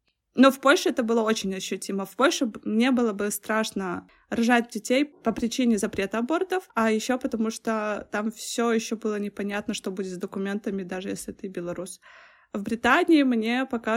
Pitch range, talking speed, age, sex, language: 210-265 Hz, 170 wpm, 20-39, female, Russian